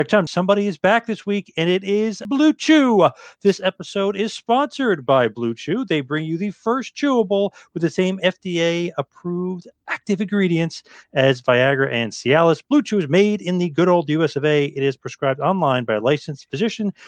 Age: 40-59